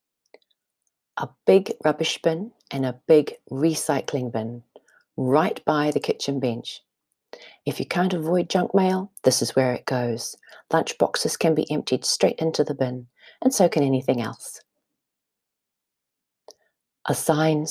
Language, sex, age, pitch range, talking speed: English, female, 40-59, 135-210 Hz, 135 wpm